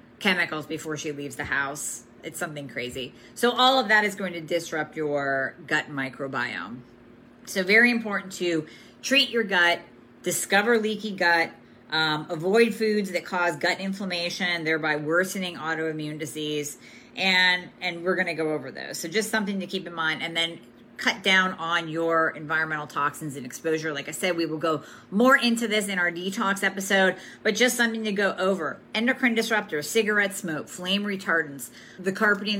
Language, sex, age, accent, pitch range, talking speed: English, female, 40-59, American, 155-195 Hz, 170 wpm